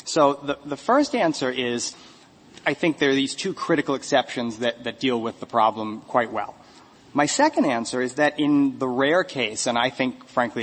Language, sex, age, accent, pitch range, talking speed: English, male, 30-49, American, 120-140 Hz, 200 wpm